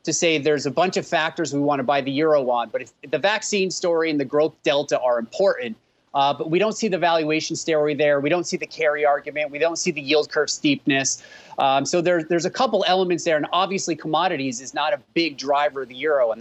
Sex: male